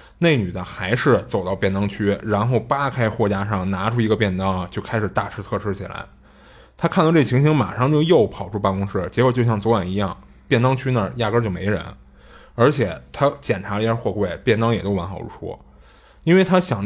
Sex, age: male, 20-39